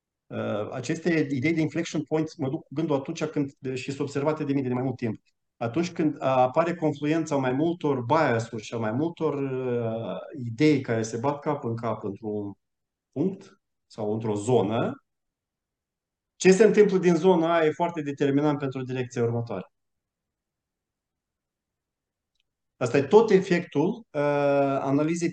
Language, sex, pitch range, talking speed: Romanian, male, 120-155 Hz, 145 wpm